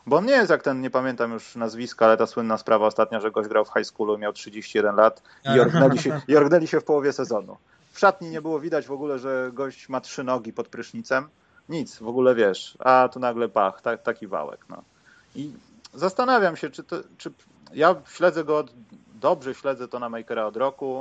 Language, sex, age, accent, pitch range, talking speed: Polish, male, 30-49, native, 120-155 Hz, 210 wpm